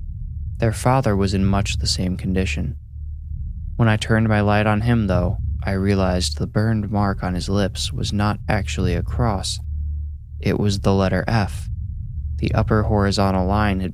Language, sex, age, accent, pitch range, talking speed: English, male, 20-39, American, 85-105 Hz, 170 wpm